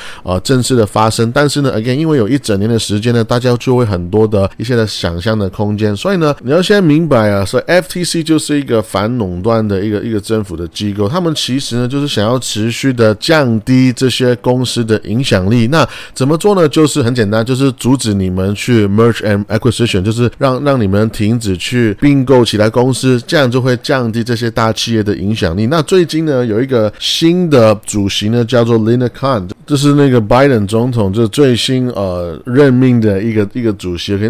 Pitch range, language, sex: 110-135 Hz, Chinese, male